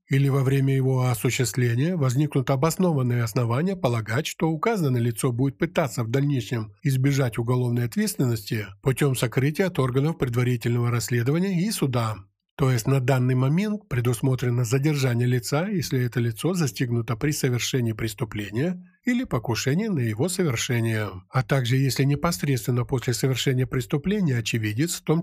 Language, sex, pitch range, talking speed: Ukrainian, male, 120-155 Hz, 135 wpm